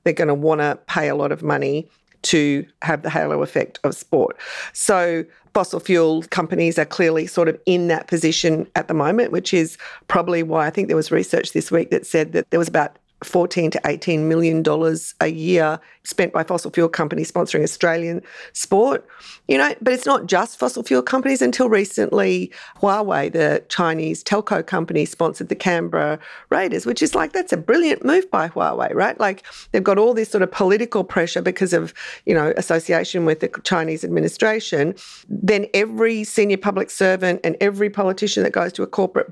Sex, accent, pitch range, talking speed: female, Australian, 165-200 Hz, 190 wpm